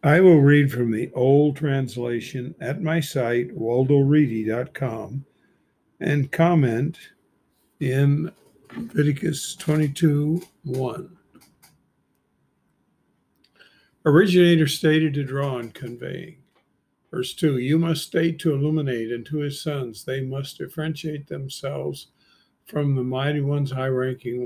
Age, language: 50-69, English